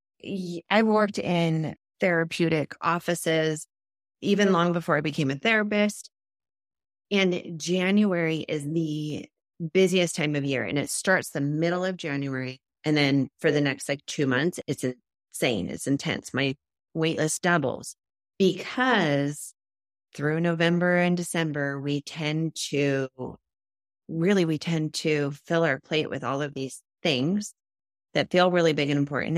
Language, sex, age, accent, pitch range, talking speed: English, female, 30-49, American, 140-175 Hz, 140 wpm